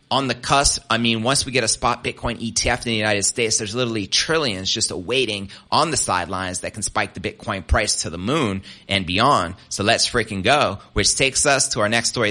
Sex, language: male, English